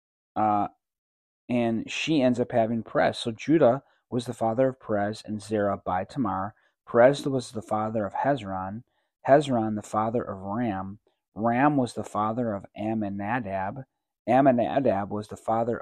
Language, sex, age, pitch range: English, male, 30-49, 105-125 Hz